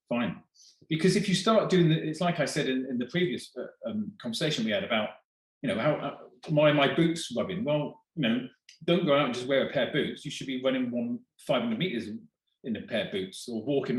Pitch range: 125-200 Hz